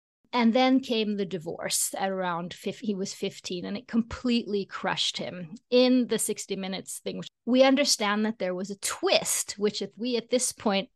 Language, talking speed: English, 185 wpm